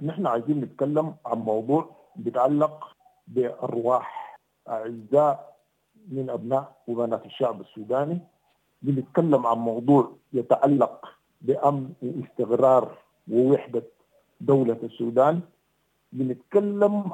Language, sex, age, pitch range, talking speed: English, male, 50-69, 120-165 Hz, 80 wpm